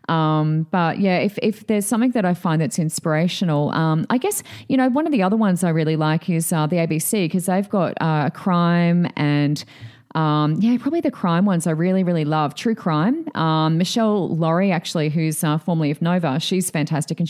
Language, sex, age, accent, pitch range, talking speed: English, female, 30-49, Australian, 155-190 Hz, 210 wpm